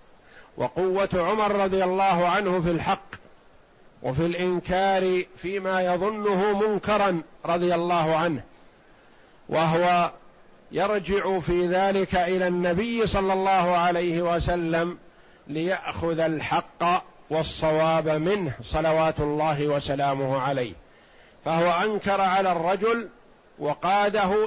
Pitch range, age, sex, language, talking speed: 160-190 Hz, 50-69, male, Arabic, 95 wpm